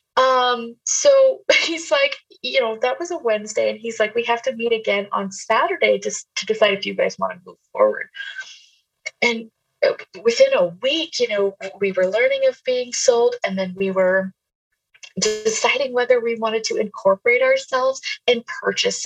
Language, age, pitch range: English, 20-39, 200-295 Hz